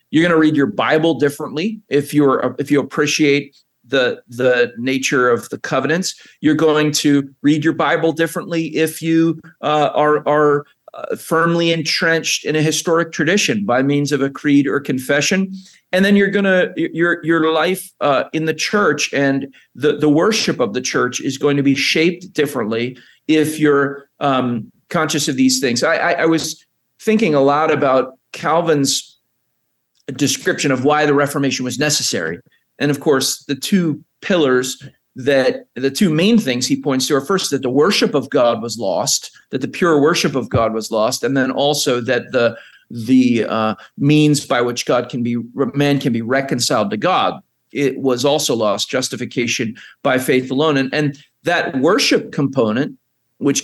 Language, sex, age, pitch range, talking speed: English, male, 40-59, 135-165 Hz, 175 wpm